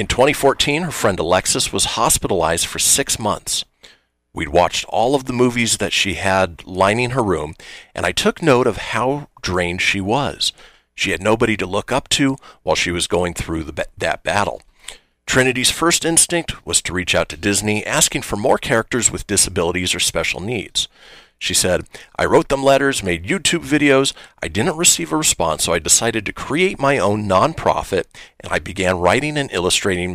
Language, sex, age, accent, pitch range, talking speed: English, male, 40-59, American, 90-130 Hz, 180 wpm